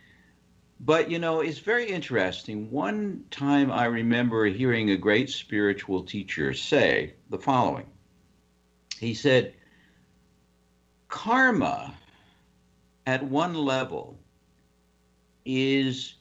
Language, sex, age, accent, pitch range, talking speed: English, male, 60-79, American, 90-145 Hz, 95 wpm